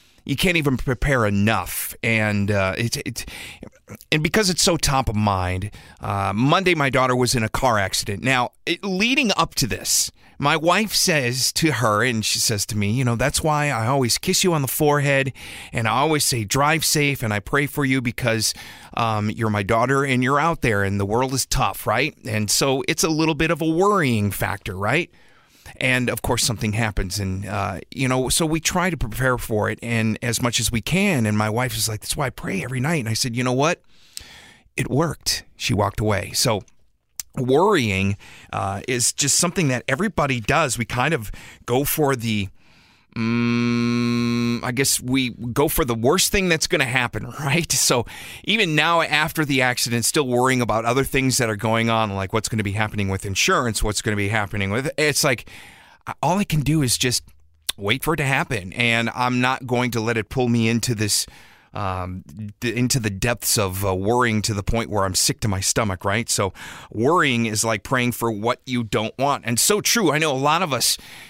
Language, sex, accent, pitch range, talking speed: English, male, American, 110-140 Hz, 210 wpm